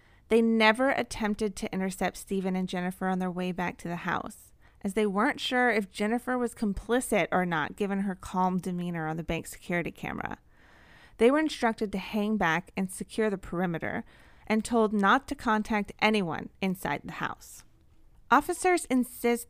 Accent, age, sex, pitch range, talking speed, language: American, 30-49, female, 185-225 Hz, 170 wpm, English